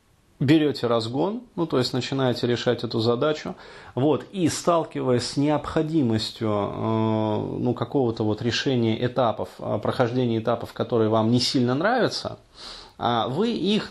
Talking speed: 125 wpm